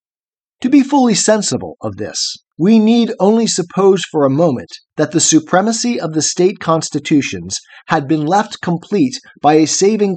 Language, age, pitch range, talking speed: English, 40-59, 145-190 Hz, 160 wpm